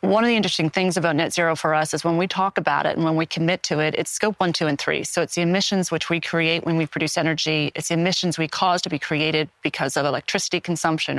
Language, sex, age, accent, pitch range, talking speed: English, female, 30-49, American, 160-190 Hz, 275 wpm